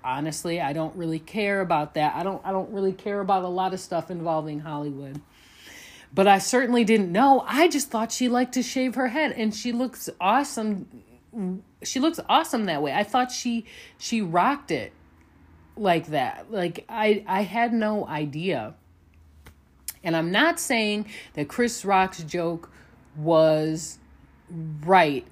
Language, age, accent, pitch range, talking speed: English, 30-49, American, 155-225 Hz, 160 wpm